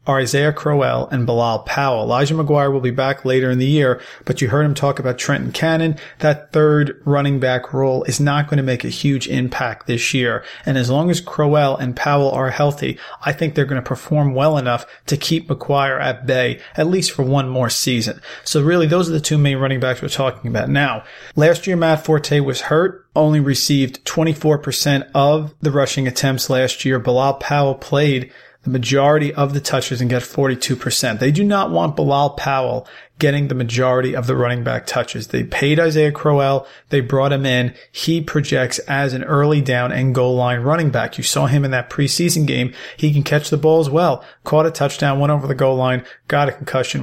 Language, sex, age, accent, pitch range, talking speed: English, male, 40-59, American, 130-150 Hz, 210 wpm